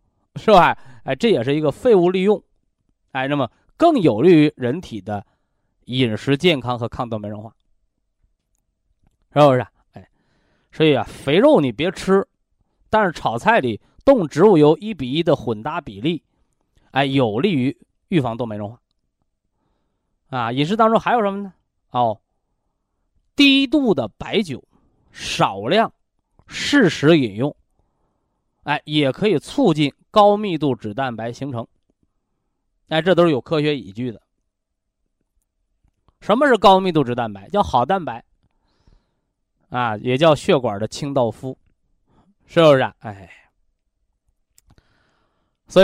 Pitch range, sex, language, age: 115-170 Hz, male, Chinese, 20-39